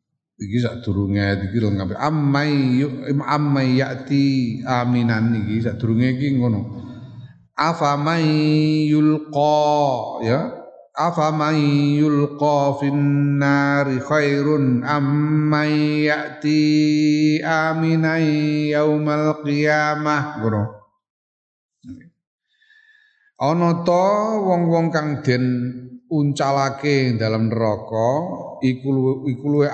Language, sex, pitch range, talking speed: Indonesian, male, 120-155 Hz, 70 wpm